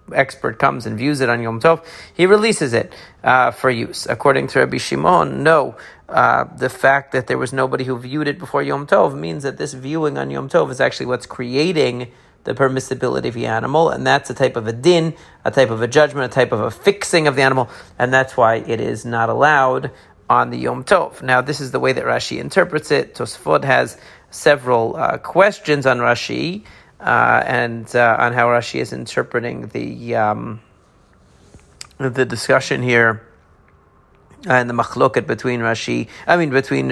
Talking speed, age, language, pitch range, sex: 185 wpm, 40-59, English, 115-140 Hz, male